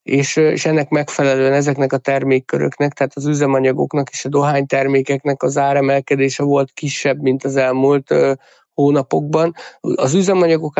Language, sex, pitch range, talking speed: Hungarian, male, 135-150 Hz, 130 wpm